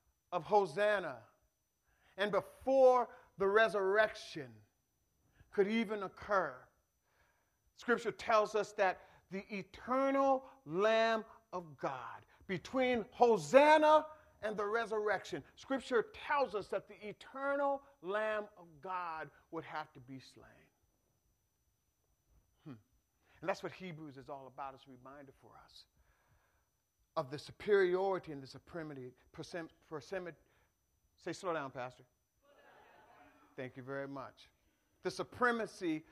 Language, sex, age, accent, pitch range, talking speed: English, male, 50-69, American, 160-230 Hz, 110 wpm